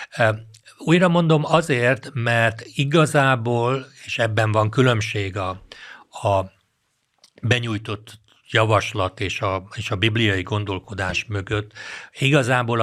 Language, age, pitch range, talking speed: Hungarian, 60-79, 105-125 Hz, 100 wpm